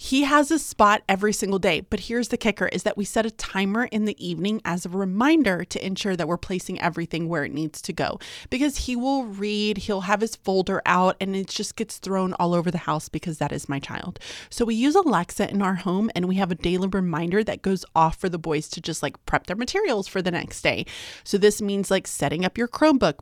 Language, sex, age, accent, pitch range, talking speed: English, female, 30-49, American, 175-220 Hz, 245 wpm